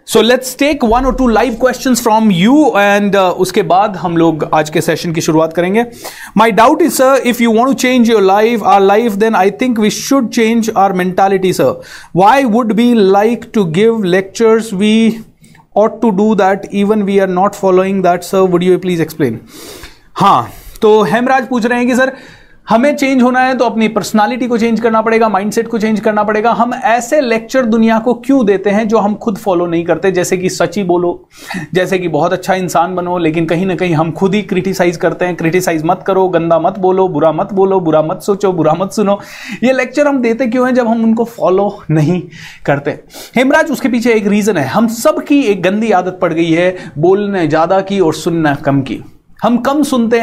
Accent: native